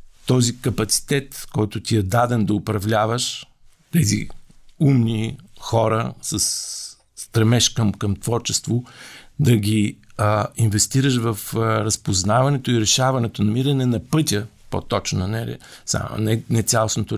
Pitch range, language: 105-130 Hz, Bulgarian